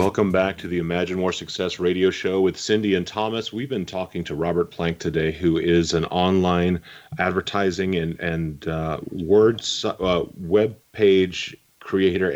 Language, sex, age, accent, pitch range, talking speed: English, male, 30-49, American, 85-105 Hz, 150 wpm